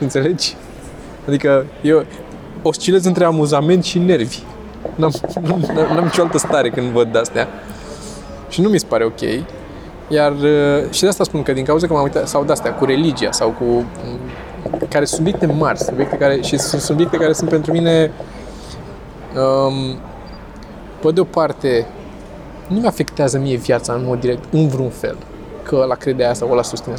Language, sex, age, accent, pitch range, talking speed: Romanian, male, 20-39, native, 130-185 Hz, 150 wpm